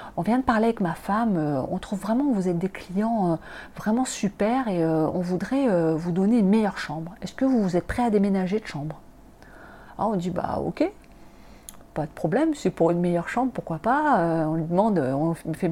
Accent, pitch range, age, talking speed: French, 170-220 Hz, 40-59, 230 wpm